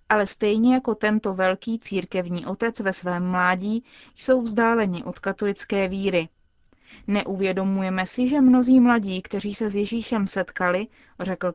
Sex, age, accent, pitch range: female, 20-39, native, 190-235 Hz